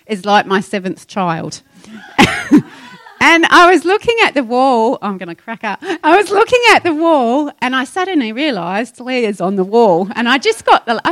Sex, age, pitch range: female, 30-49, 205-280 Hz